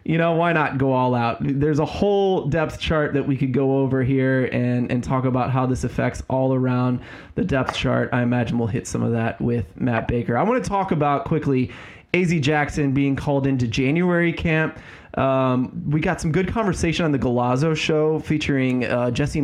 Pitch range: 125-160 Hz